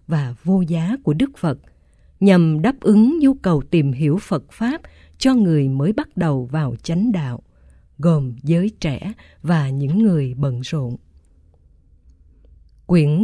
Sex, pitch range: female, 135-200 Hz